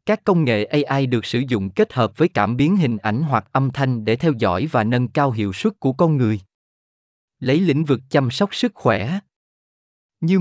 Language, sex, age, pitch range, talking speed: Vietnamese, male, 20-39, 110-160 Hz, 210 wpm